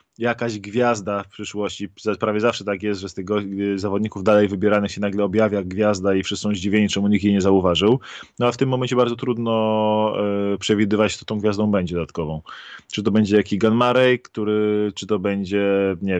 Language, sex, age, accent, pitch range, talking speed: Polish, male, 20-39, native, 100-125 Hz, 190 wpm